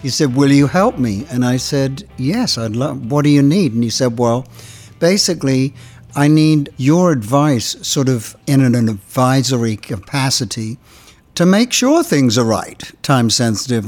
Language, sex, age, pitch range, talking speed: English, male, 60-79, 120-145 Hz, 165 wpm